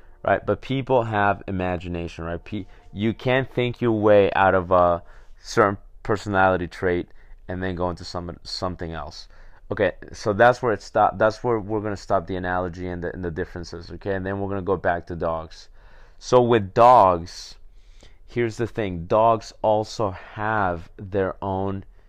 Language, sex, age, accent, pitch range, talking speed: English, male, 30-49, American, 90-105 Hz, 175 wpm